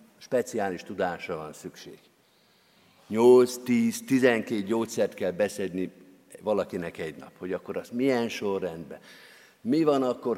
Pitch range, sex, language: 95-135 Hz, male, Hungarian